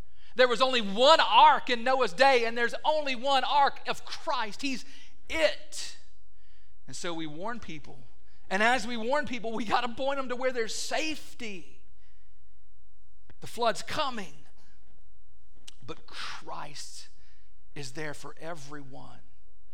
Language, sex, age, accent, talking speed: English, male, 50-69, American, 135 wpm